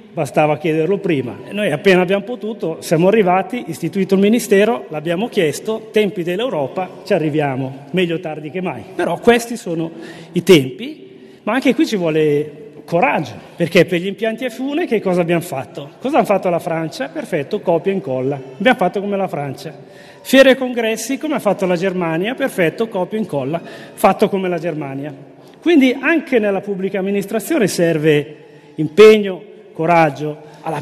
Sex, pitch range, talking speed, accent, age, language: male, 160-220 Hz, 160 wpm, native, 40-59, Italian